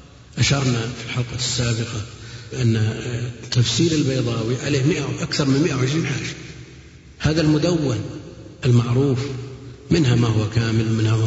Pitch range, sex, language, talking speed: 115-125 Hz, male, Arabic, 115 wpm